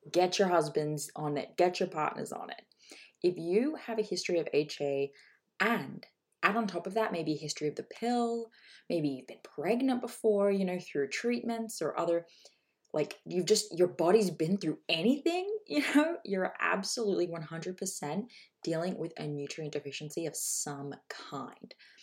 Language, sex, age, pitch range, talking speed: English, female, 20-39, 150-220 Hz, 165 wpm